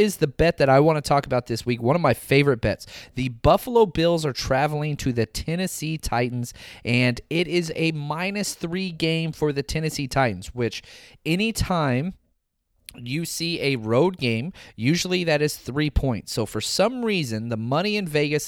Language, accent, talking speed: English, American, 180 wpm